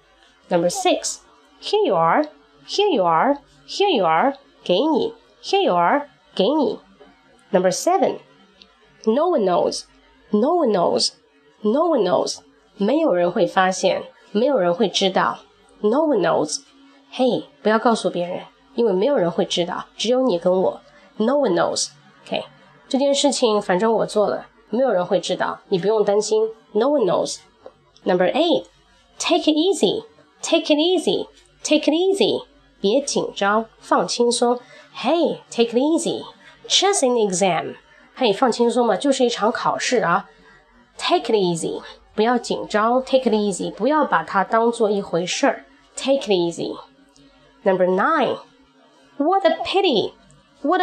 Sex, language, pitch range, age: female, Chinese, 200-300 Hz, 20-39